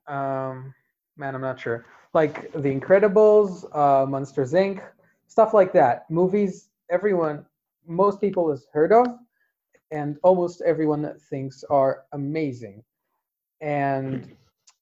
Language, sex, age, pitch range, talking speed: English, male, 30-49, 140-185 Hz, 115 wpm